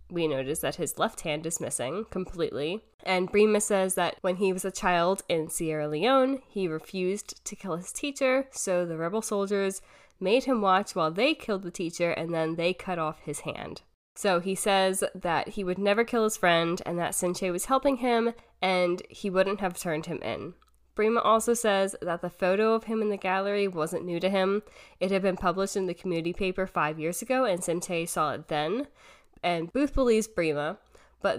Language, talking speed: English, 200 wpm